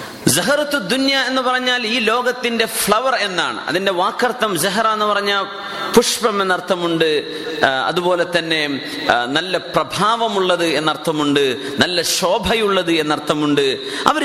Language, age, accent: Malayalam, 30-49, native